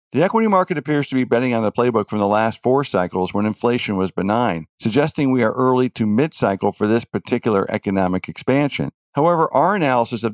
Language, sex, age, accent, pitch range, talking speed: English, male, 50-69, American, 100-130 Hz, 195 wpm